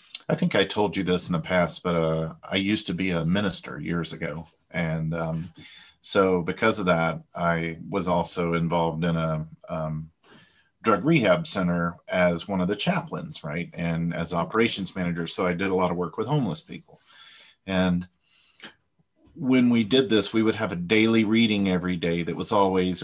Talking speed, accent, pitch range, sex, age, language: 185 wpm, American, 85-105 Hz, male, 40-59, English